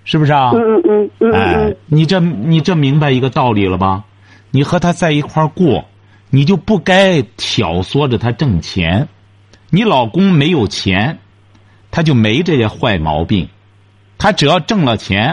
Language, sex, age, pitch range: Chinese, male, 50-69, 100-170 Hz